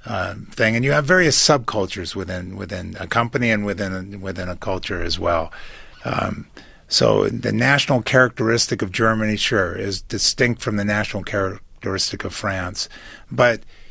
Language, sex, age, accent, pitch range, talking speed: English, male, 50-69, American, 100-140 Hz, 155 wpm